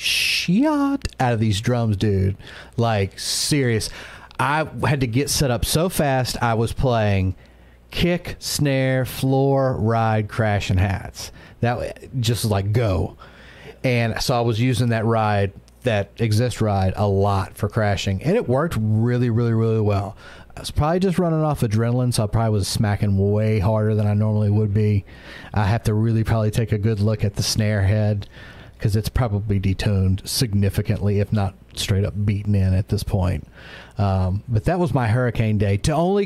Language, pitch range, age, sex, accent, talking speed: English, 100-125 Hz, 40-59, male, American, 170 wpm